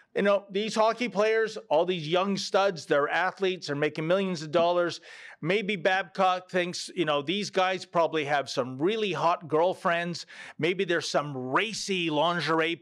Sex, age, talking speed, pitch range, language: male, 40-59, 160 wpm, 170-225 Hz, English